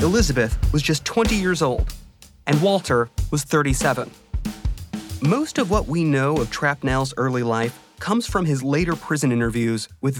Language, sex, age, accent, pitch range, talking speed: English, male, 30-49, American, 125-175 Hz, 155 wpm